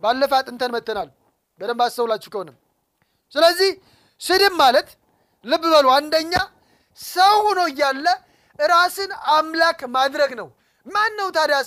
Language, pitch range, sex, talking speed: Amharic, 265-345 Hz, male, 115 wpm